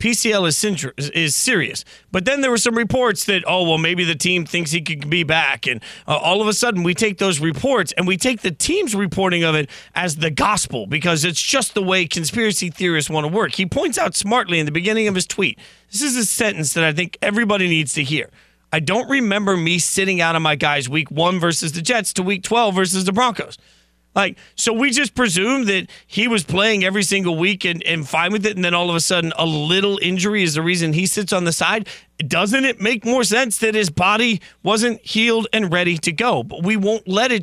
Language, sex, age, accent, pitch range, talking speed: English, male, 40-59, American, 175-220 Hz, 235 wpm